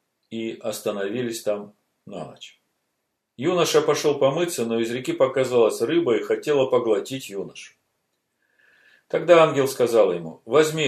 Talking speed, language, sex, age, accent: 120 wpm, Russian, male, 50-69, native